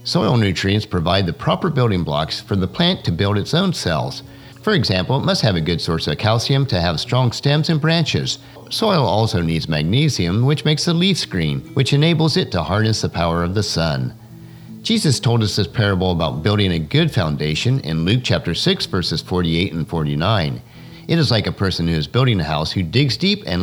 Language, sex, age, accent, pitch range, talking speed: English, male, 50-69, American, 90-145 Hz, 210 wpm